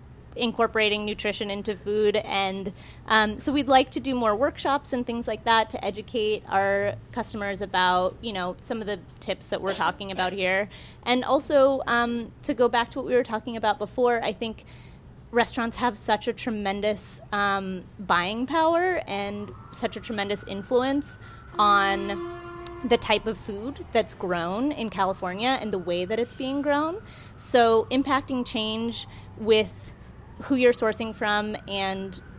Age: 20-39